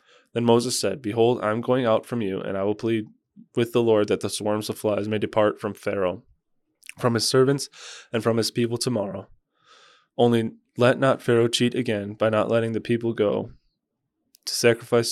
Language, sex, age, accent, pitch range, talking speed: English, male, 20-39, American, 110-125 Hz, 190 wpm